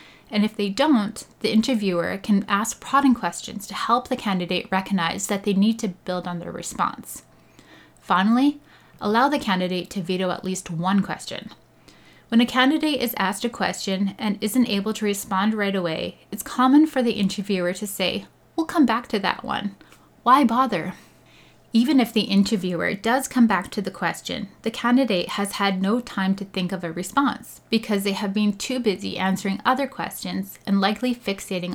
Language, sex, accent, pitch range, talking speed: English, female, American, 190-235 Hz, 180 wpm